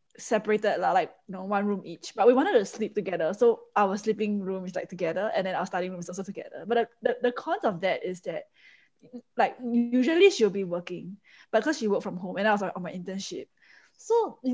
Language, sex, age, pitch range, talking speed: English, female, 10-29, 195-260 Hz, 235 wpm